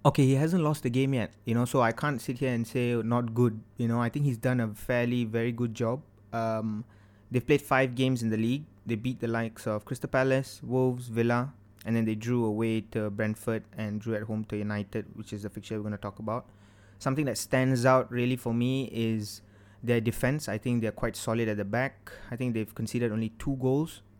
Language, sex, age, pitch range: English, male, 20-39, 105-125 Hz